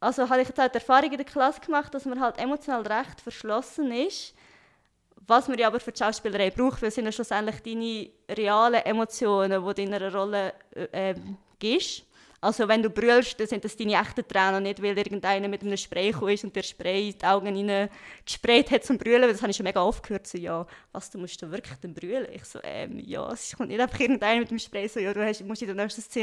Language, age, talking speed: German, 20-39, 220 wpm